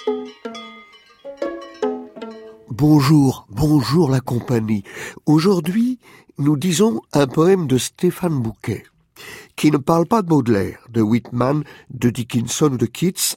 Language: French